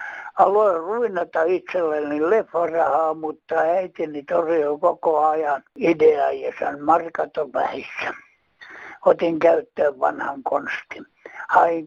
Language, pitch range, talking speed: Finnish, 155-225 Hz, 85 wpm